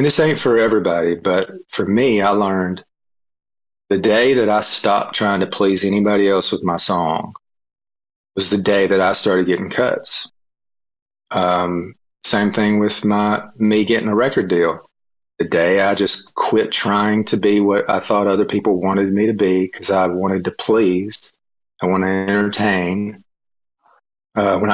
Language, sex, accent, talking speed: English, male, American, 165 wpm